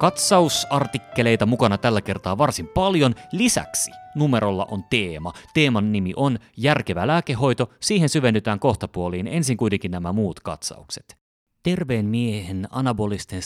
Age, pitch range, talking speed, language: 30-49, 95-135 Hz, 115 wpm, Finnish